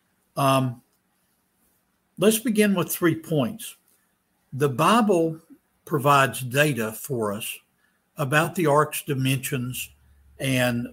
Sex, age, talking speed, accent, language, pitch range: male, 60-79, 95 wpm, American, English, 120-155 Hz